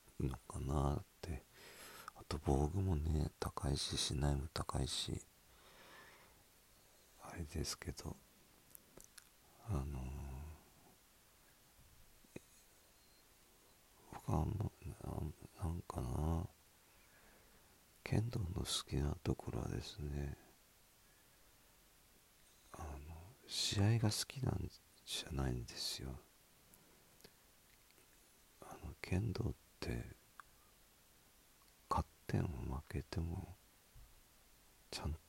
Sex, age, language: male, 50-69, Japanese